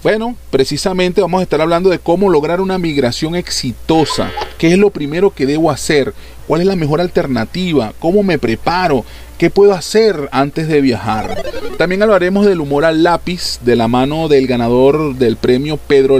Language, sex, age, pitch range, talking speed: Spanish, male, 40-59, 130-180 Hz, 175 wpm